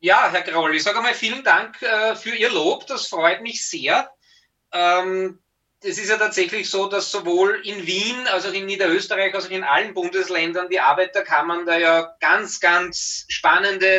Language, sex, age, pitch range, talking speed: German, male, 20-39, 185-230 Hz, 180 wpm